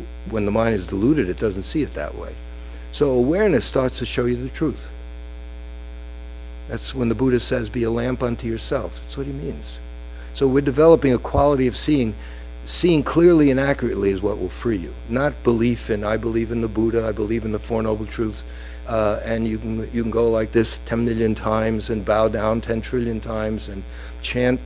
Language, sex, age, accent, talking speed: English, male, 60-79, American, 200 wpm